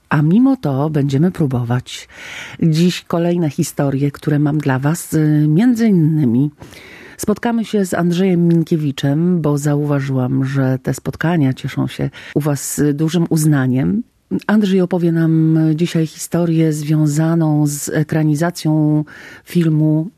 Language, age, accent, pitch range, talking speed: Polish, 40-59, native, 145-190 Hz, 115 wpm